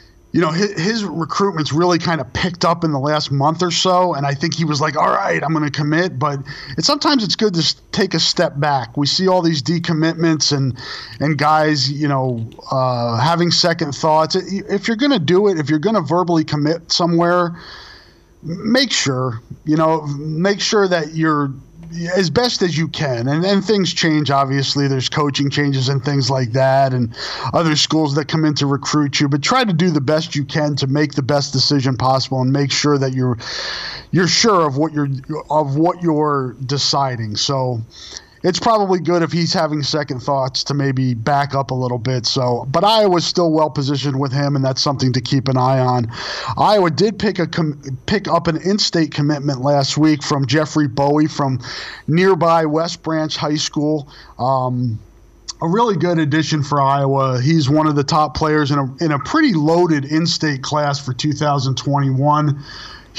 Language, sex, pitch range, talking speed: English, male, 140-170 Hz, 190 wpm